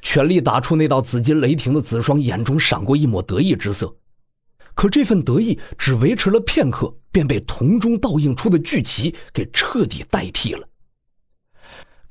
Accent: native